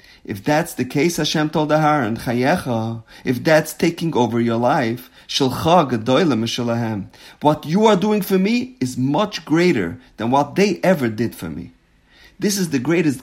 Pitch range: 110-150 Hz